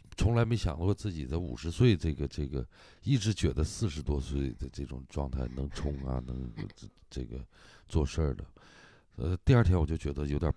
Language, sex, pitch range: Chinese, male, 70-95 Hz